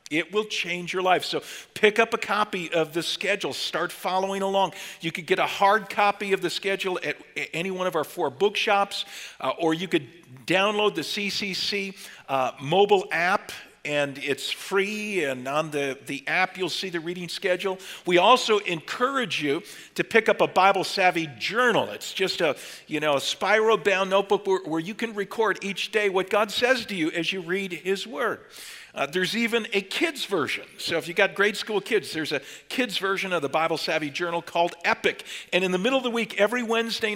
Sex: male